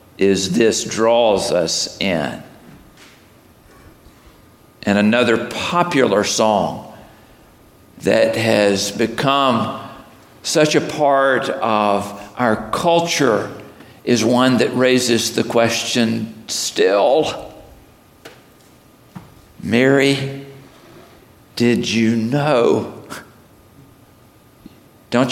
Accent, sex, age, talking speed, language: American, male, 50-69, 70 wpm, Spanish